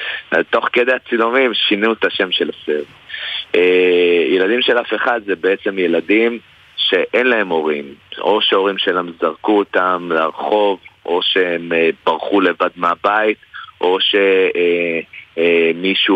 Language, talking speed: Hebrew, 125 wpm